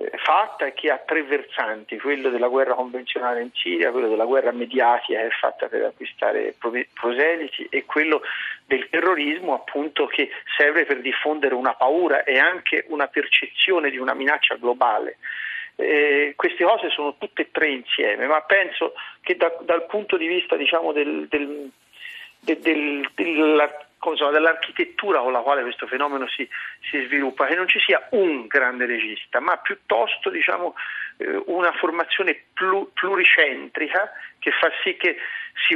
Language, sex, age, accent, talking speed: Italian, male, 40-59, native, 150 wpm